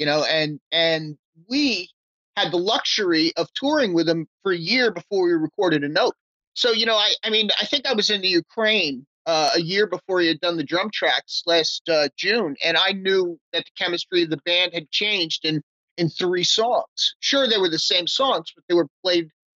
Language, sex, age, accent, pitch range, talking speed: English, male, 30-49, American, 165-220 Hz, 220 wpm